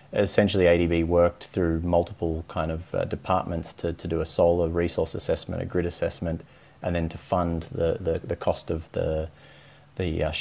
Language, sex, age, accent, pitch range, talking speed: English, male, 30-49, Australian, 80-85 Hz, 180 wpm